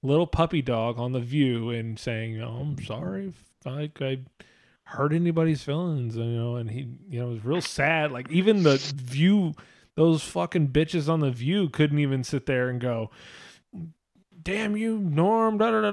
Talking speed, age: 190 wpm, 20-39